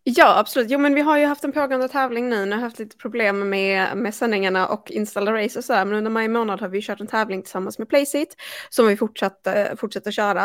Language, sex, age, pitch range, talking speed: Swedish, female, 20-39, 200-240 Hz, 240 wpm